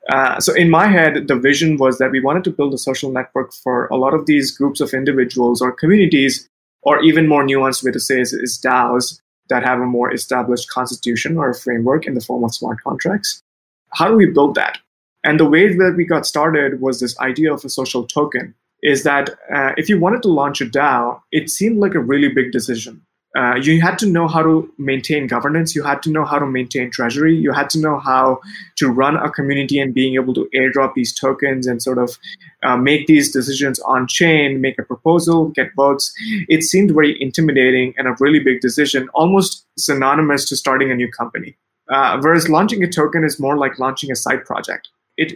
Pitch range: 130-160 Hz